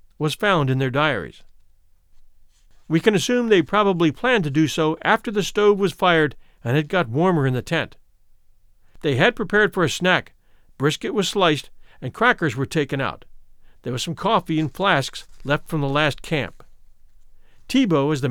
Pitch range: 135-200 Hz